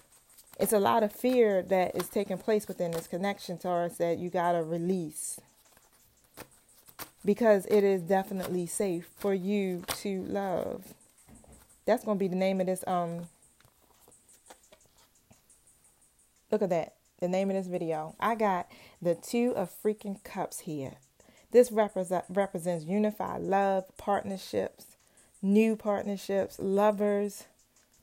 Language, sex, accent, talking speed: English, female, American, 130 wpm